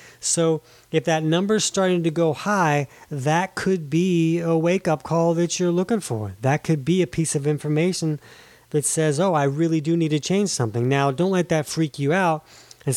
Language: English